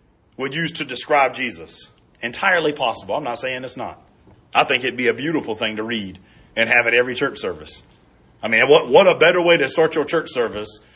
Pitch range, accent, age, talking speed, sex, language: 155-245 Hz, American, 40-59, 215 wpm, male, English